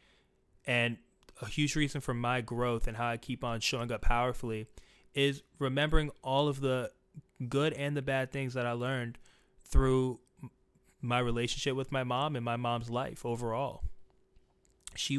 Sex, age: male, 20-39